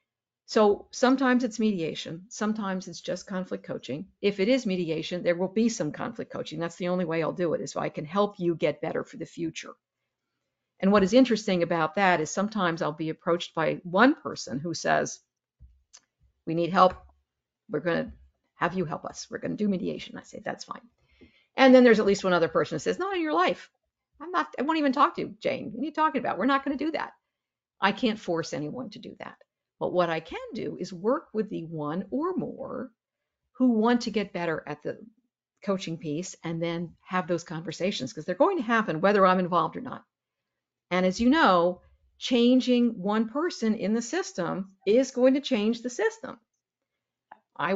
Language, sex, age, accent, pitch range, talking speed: English, female, 50-69, American, 170-245 Hz, 210 wpm